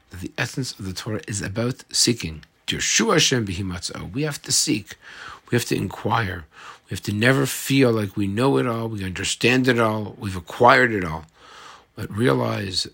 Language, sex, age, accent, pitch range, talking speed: English, male, 50-69, American, 90-110 Hz, 170 wpm